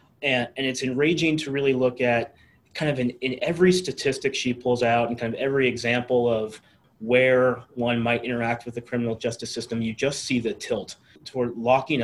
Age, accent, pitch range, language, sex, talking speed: 30-49, American, 115-130 Hz, English, male, 195 wpm